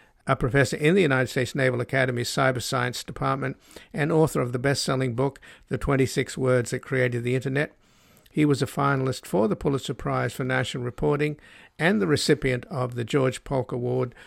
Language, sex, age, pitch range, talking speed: English, male, 60-79, 125-140 Hz, 180 wpm